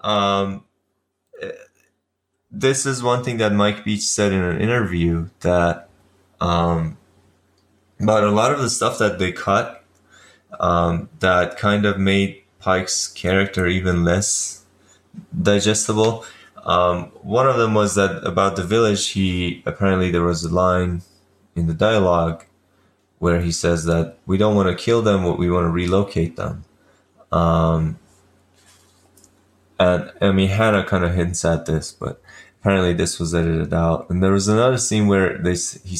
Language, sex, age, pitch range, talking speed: English, male, 20-39, 85-100 Hz, 150 wpm